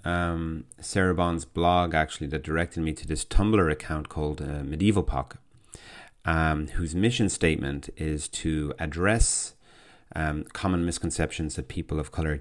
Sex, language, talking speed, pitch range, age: male, English, 140 wpm, 75-90 Hz, 30-49